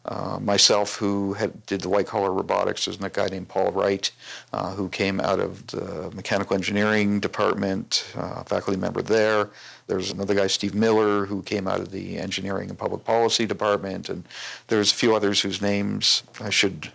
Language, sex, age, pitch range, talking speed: English, male, 50-69, 100-110 Hz, 180 wpm